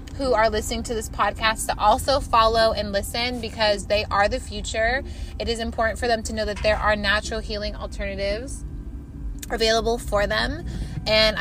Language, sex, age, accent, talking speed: English, female, 20-39, American, 175 wpm